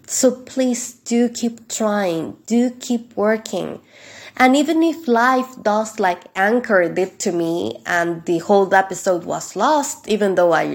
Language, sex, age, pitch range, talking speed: English, female, 20-39, 195-250 Hz, 150 wpm